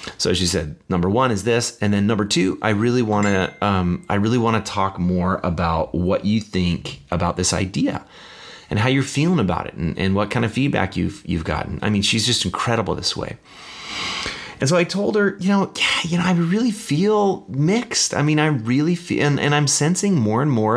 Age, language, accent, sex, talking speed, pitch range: 30-49, English, American, male, 220 wpm, 90-120 Hz